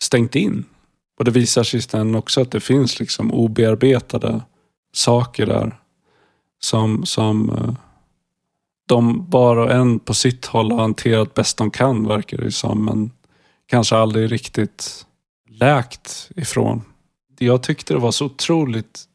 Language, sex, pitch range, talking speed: Swedish, male, 110-125 Hz, 135 wpm